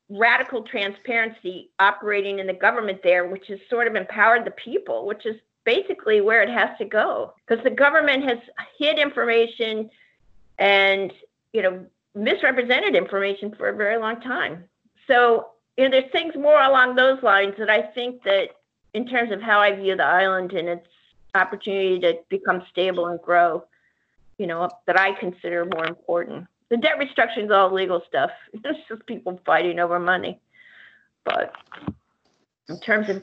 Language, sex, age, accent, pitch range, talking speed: English, female, 50-69, American, 185-250 Hz, 165 wpm